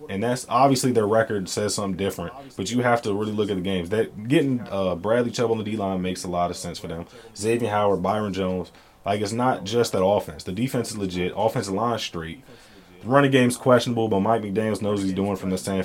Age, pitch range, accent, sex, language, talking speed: 20-39, 95-125 Hz, American, male, English, 245 wpm